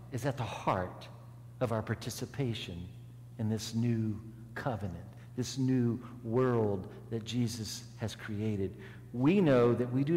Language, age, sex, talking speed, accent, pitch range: English, 50-69, male, 135 wpm, American, 110-125 Hz